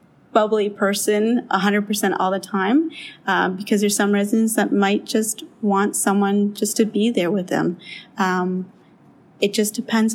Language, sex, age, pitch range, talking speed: English, female, 30-49, 190-210 Hz, 155 wpm